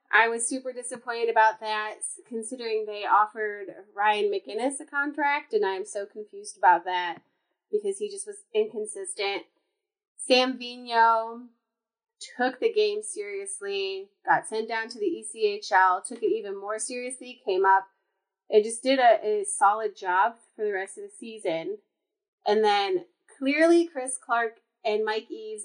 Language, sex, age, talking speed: English, female, 30-49, 150 wpm